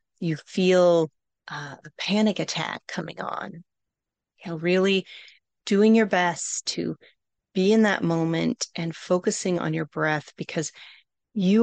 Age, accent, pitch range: 30-49, American, 165-210 Hz